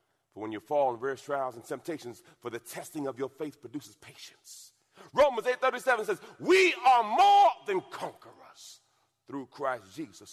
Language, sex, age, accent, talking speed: English, male, 40-59, American, 165 wpm